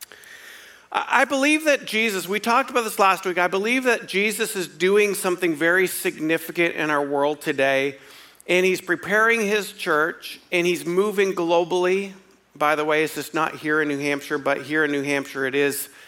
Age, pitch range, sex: 50-69, 155-205 Hz, male